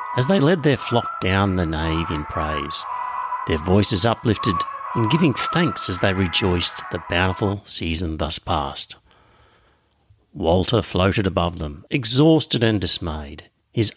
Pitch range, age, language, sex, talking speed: 90-135 Hz, 50-69, English, male, 140 wpm